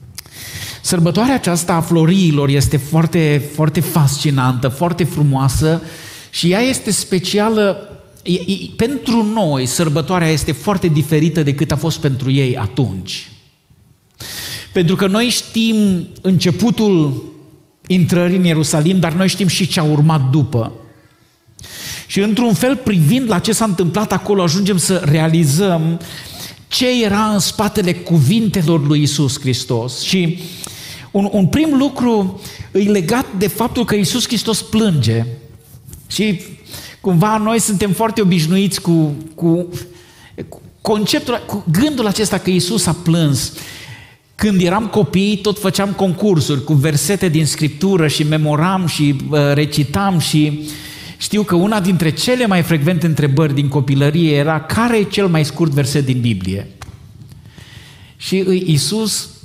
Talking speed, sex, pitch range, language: 130 wpm, male, 145-200 Hz, Romanian